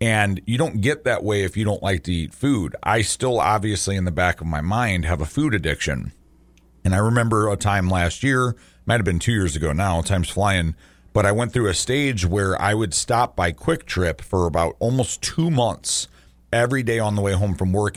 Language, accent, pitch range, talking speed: English, American, 85-110 Hz, 225 wpm